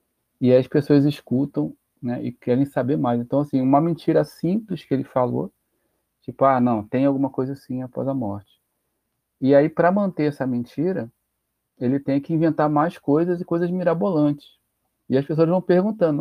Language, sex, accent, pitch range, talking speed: Portuguese, male, Brazilian, 125-150 Hz, 175 wpm